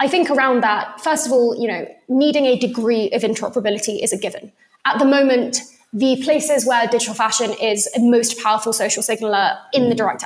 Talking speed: 200 wpm